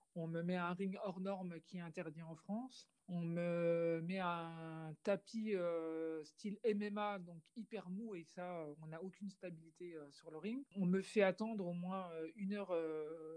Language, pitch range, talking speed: French, 165-200 Hz, 195 wpm